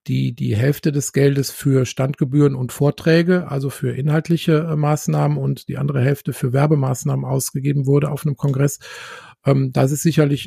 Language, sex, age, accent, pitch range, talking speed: German, male, 50-69, German, 135-155 Hz, 160 wpm